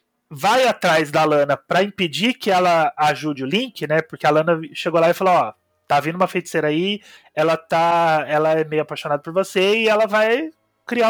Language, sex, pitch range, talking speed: Portuguese, male, 155-215 Hz, 200 wpm